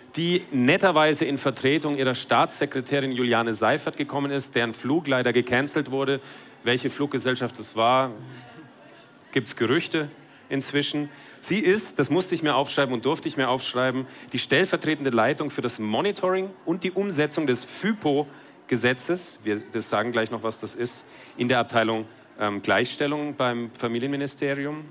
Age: 40-59